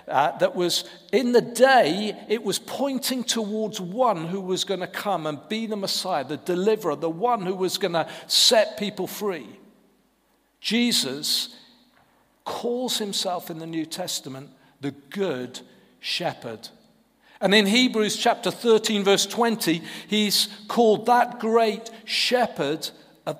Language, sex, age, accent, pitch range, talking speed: English, male, 50-69, British, 165-225 Hz, 135 wpm